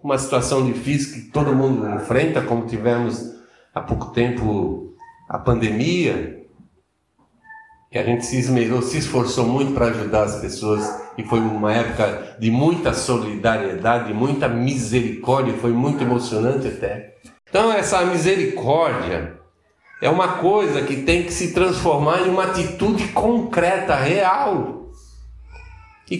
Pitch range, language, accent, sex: 125-195 Hz, Portuguese, Brazilian, male